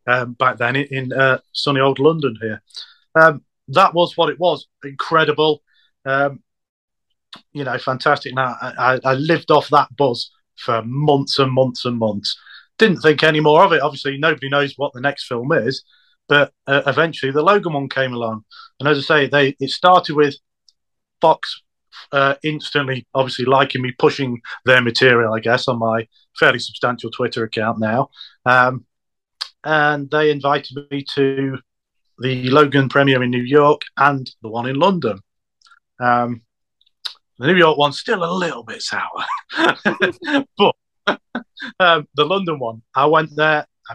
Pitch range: 120-150 Hz